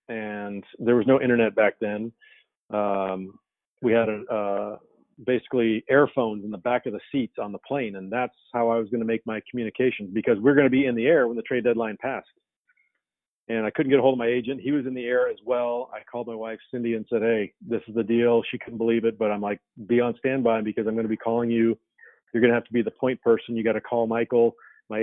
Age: 40-59